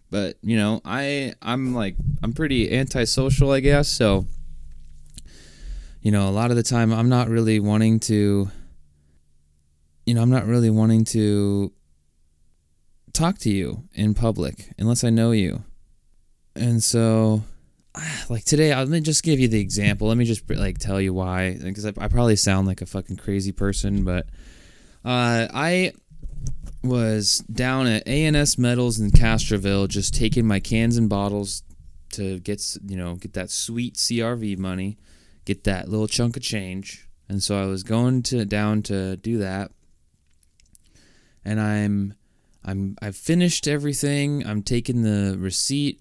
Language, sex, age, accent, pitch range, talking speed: English, male, 20-39, American, 95-120 Hz, 155 wpm